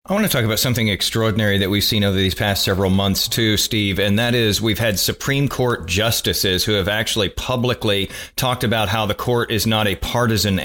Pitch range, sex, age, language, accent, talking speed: 100-120 Hz, male, 40-59, English, American, 215 wpm